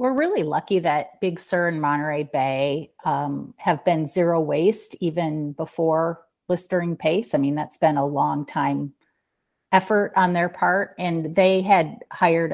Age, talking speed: 30-49, 160 wpm